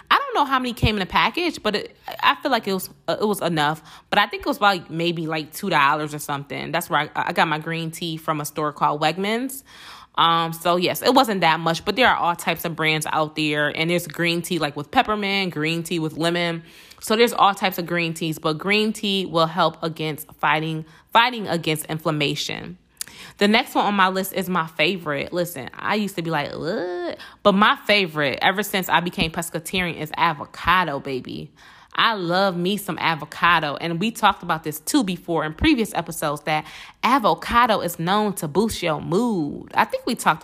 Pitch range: 160-210 Hz